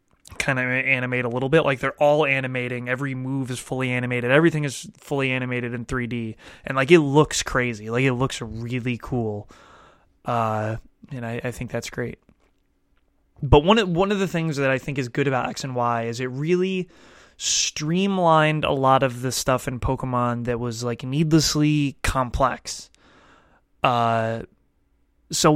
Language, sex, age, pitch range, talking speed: English, male, 20-39, 120-145 Hz, 170 wpm